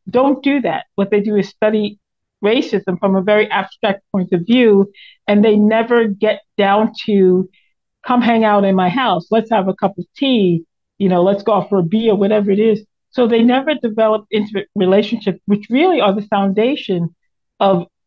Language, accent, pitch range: English, American, 185-230 Hz